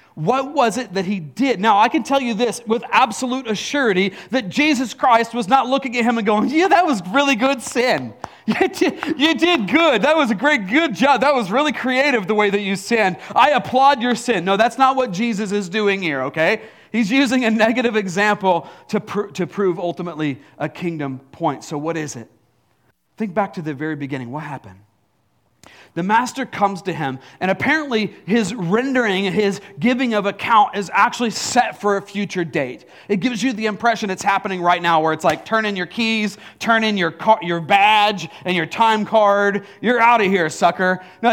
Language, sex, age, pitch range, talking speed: English, male, 40-59, 185-250 Hz, 200 wpm